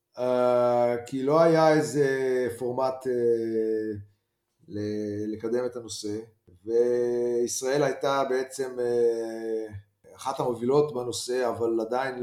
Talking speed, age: 100 wpm, 30-49